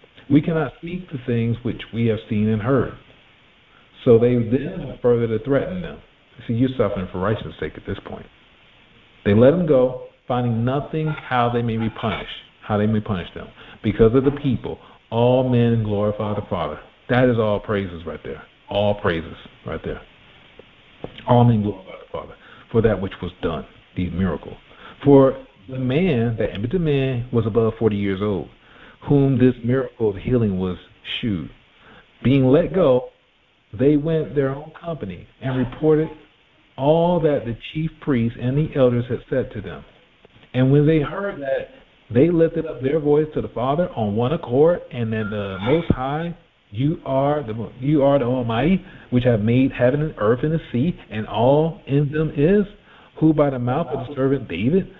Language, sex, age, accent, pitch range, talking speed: English, male, 50-69, American, 110-150 Hz, 180 wpm